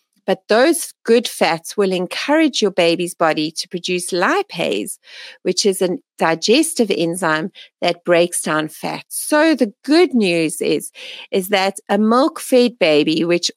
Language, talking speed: English, 140 wpm